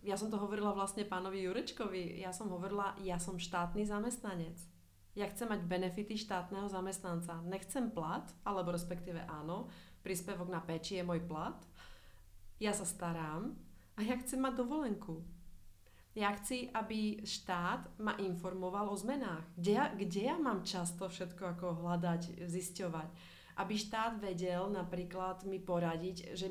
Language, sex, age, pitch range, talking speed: Czech, female, 30-49, 175-205 Hz, 160 wpm